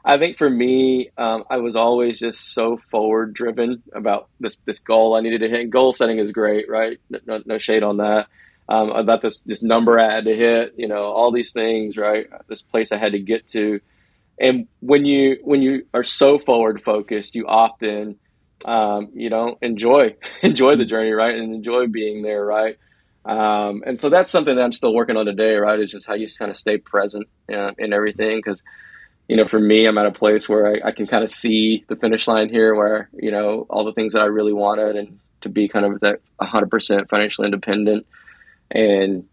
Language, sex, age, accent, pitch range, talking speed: English, male, 20-39, American, 105-115 Hz, 215 wpm